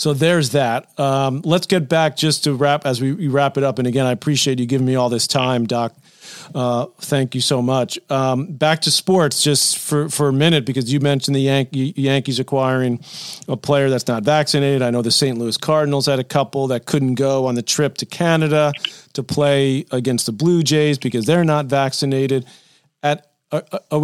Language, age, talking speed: English, 40-59, 200 wpm